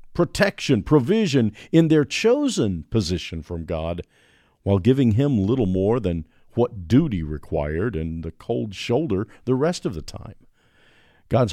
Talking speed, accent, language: 140 wpm, American, English